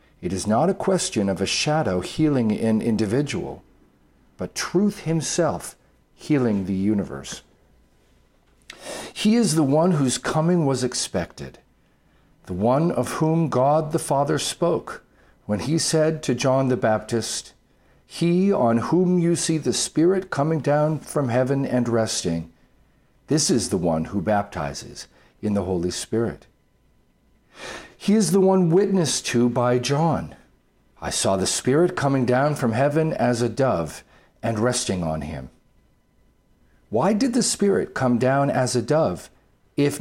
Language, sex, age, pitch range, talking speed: English, male, 50-69, 110-160 Hz, 145 wpm